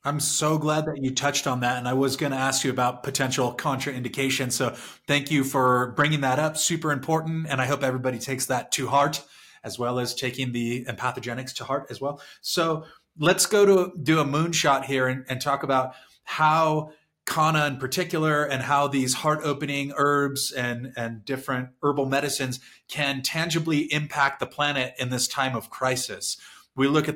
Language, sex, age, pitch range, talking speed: English, male, 30-49, 130-150 Hz, 190 wpm